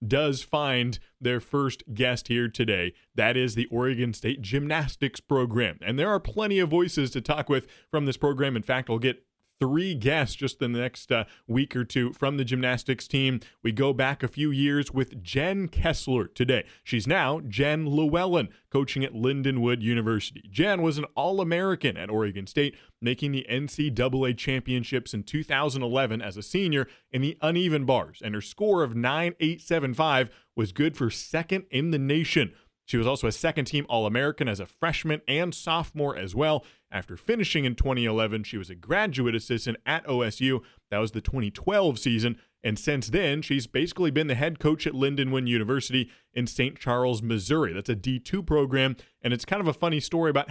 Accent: American